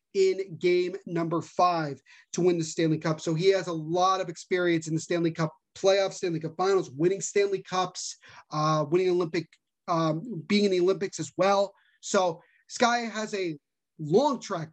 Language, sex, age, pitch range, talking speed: English, male, 30-49, 175-225 Hz, 175 wpm